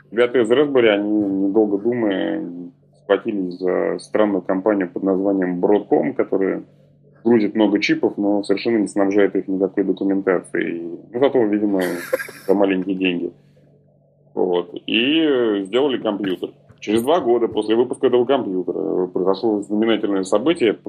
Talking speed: 125 wpm